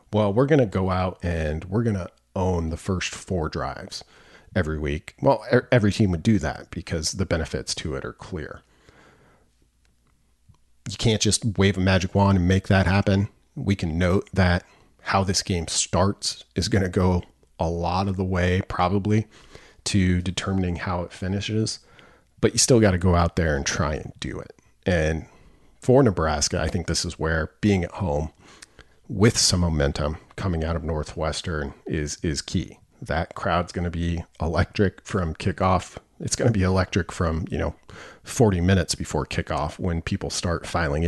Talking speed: 180 wpm